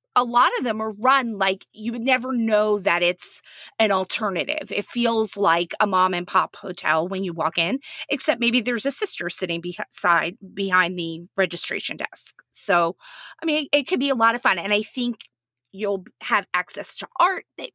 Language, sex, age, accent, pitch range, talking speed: English, female, 30-49, American, 185-250 Hz, 195 wpm